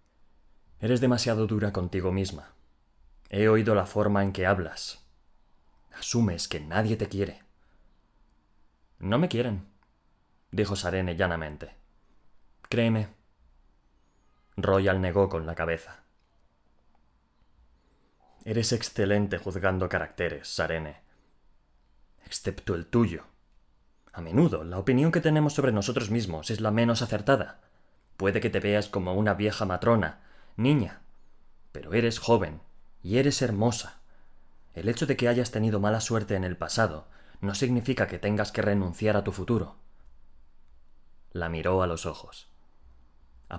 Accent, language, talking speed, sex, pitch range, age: Spanish, Spanish, 125 wpm, male, 80-110 Hz, 20-39